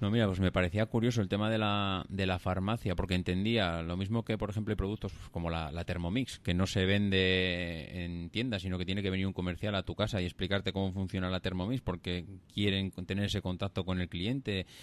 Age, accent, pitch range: 30-49, Spanish, 90-105 Hz